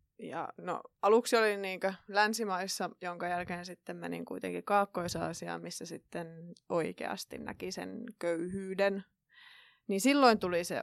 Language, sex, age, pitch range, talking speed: Finnish, female, 20-39, 175-195 Hz, 105 wpm